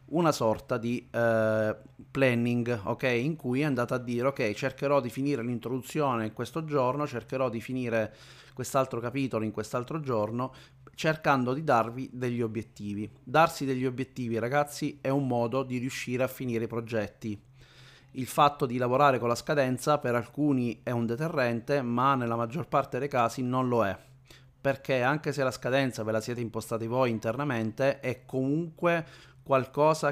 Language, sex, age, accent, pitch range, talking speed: Italian, male, 30-49, native, 115-135 Hz, 160 wpm